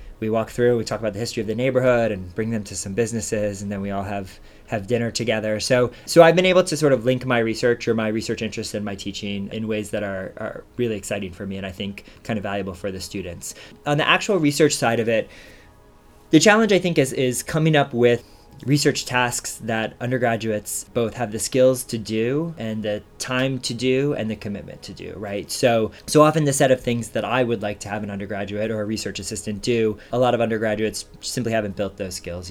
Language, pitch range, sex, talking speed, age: English, 105-120 Hz, male, 235 wpm, 20-39